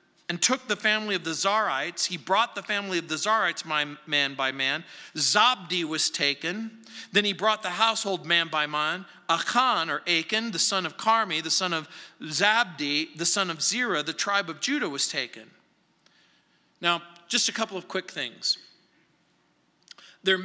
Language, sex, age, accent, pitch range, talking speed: English, male, 40-59, American, 165-220 Hz, 165 wpm